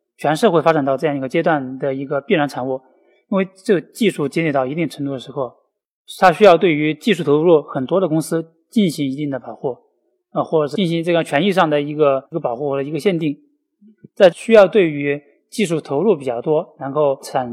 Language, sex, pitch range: Chinese, male, 140-180 Hz